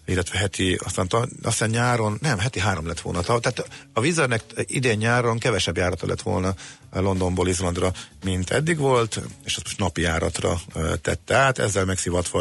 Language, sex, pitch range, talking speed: Hungarian, male, 90-110 Hz, 160 wpm